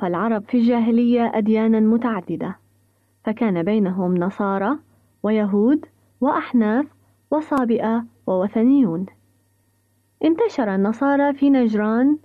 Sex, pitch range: female, 190-270 Hz